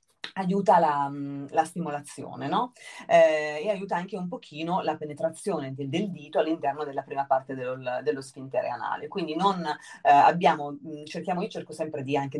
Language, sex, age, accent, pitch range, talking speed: Italian, female, 30-49, native, 140-195 Hz, 165 wpm